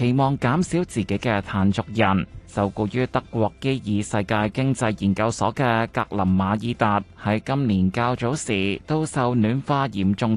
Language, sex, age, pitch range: Chinese, male, 20-39, 100-125 Hz